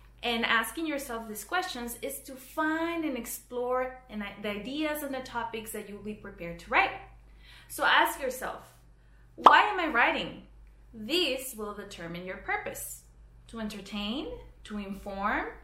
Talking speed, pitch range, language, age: 140 wpm, 200-305 Hz, English, 20-39